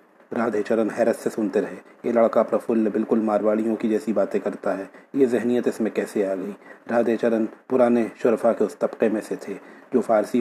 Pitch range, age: 110-120 Hz, 40-59